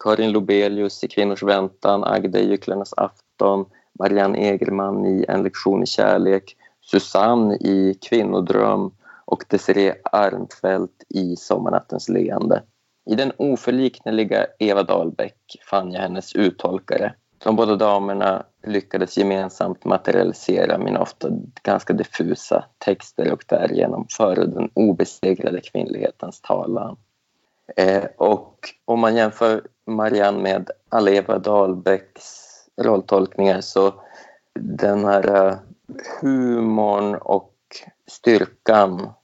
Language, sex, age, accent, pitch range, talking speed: Swedish, male, 30-49, native, 95-105 Hz, 100 wpm